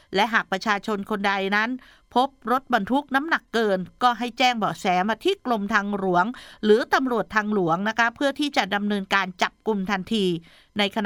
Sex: female